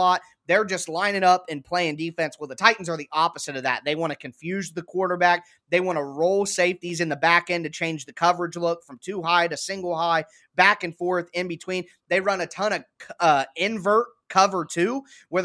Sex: male